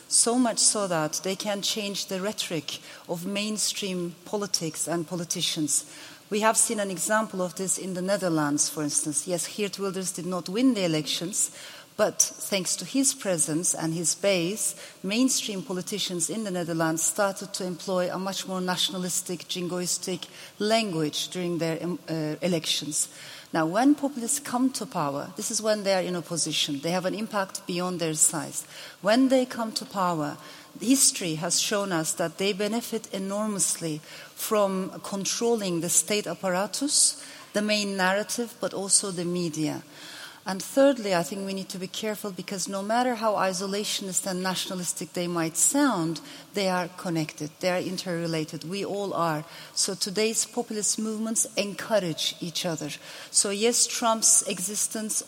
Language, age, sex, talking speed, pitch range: English, 40-59, female, 155 wpm, 170-210 Hz